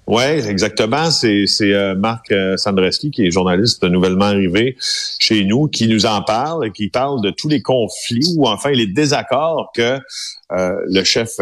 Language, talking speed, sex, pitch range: French, 180 wpm, male, 100-135 Hz